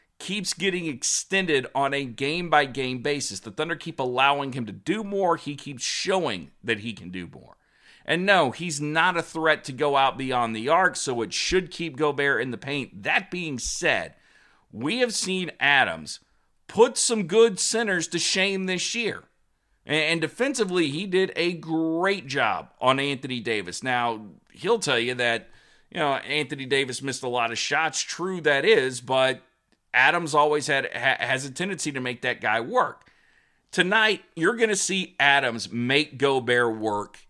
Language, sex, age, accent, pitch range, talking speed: English, male, 40-59, American, 120-170 Hz, 170 wpm